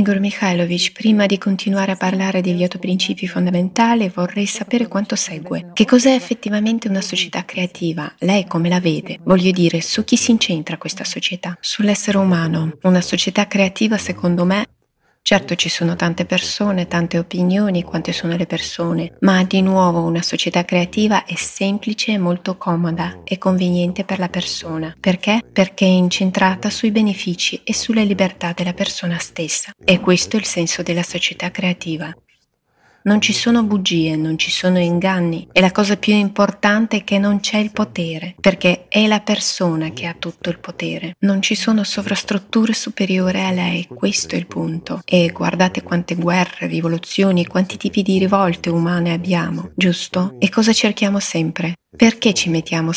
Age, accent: 30-49, native